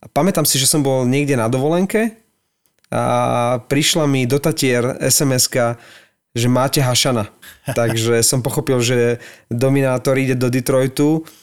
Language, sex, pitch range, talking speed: Slovak, male, 125-145 Hz, 125 wpm